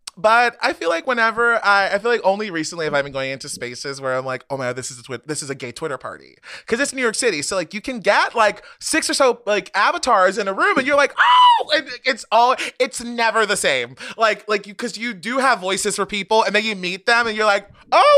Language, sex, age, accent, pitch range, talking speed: English, male, 20-39, American, 165-235 Hz, 270 wpm